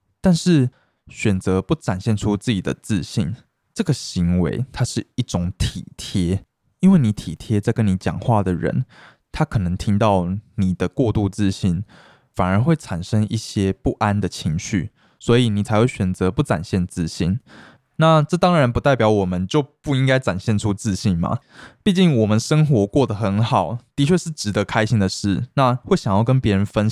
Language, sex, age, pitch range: Chinese, male, 20-39, 95-130 Hz